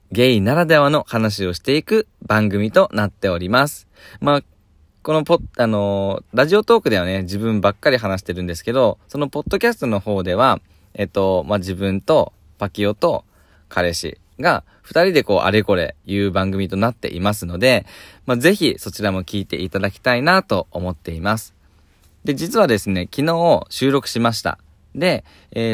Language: Japanese